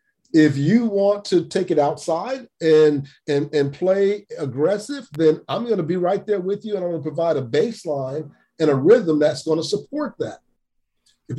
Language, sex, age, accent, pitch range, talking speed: English, male, 50-69, American, 145-200 Hz, 195 wpm